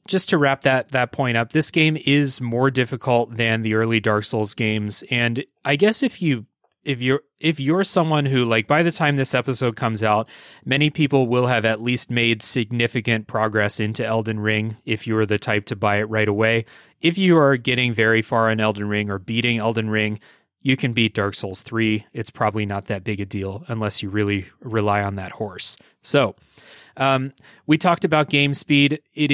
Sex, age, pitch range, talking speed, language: male, 30-49, 110-140 Hz, 205 wpm, English